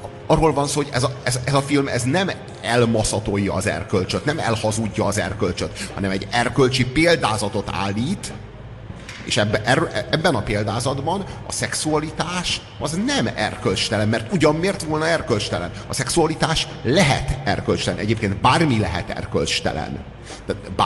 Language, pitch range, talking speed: Hungarian, 100-125 Hz, 130 wpm